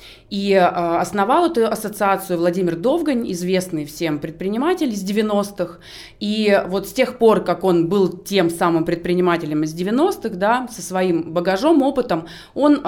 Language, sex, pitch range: Russian, female, 175-225 Hz